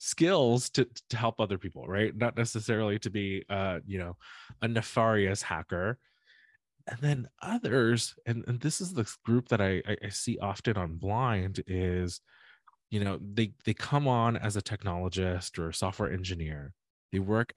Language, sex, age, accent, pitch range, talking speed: English, male, 20-39, American, 95-125 Hz, 165 wpm